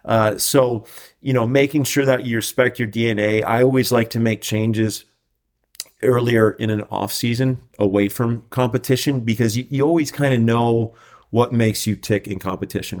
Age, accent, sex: 30-49, American, male